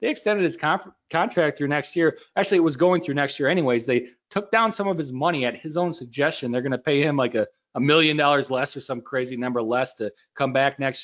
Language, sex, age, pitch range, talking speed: English, male, 30-49, 130-185 Hz, 250 wpm